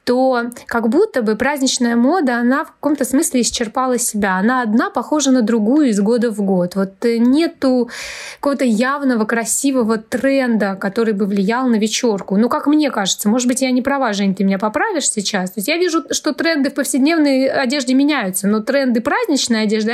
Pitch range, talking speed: 215-275 Hz, 180 wpm